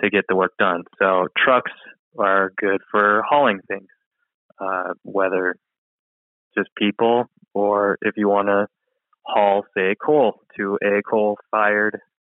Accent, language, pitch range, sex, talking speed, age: American, English, 95-105 Hz, male, 130 wpm, 20-39